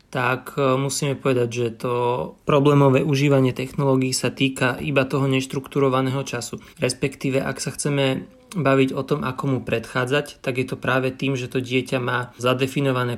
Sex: male